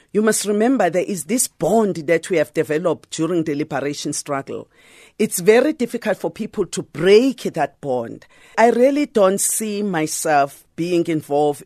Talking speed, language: 160 wpm, English